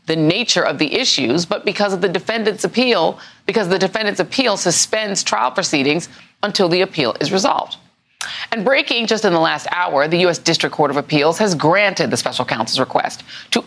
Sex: female